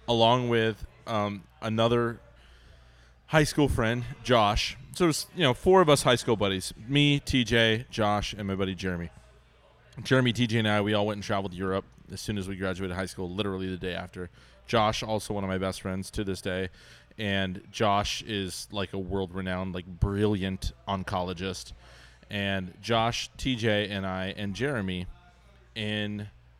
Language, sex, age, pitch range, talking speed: English, male, 20-39, 95-120 Hz, 170 wpm